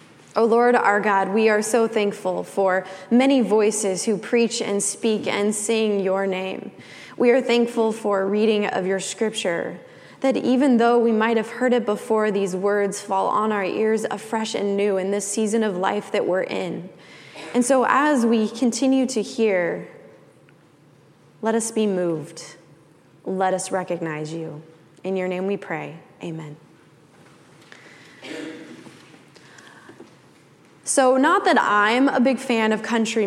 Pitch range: 195-240 Hz